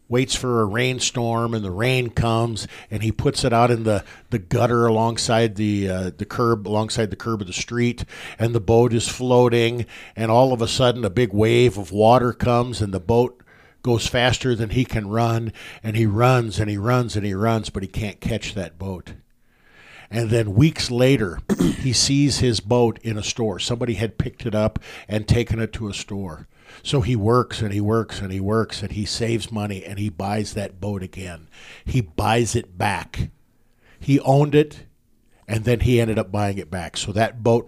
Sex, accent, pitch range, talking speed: male, American, 105-125 Hz, 195 wpm